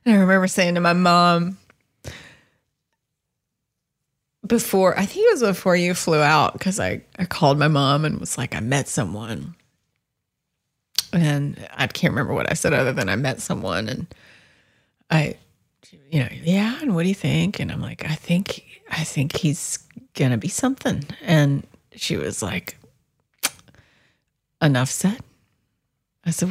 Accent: American